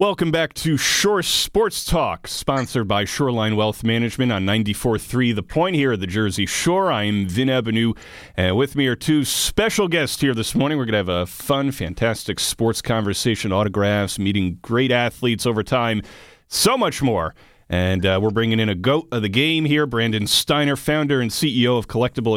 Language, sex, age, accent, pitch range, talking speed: English, male, 40-59, American, 110-145 Hz, 190 wpm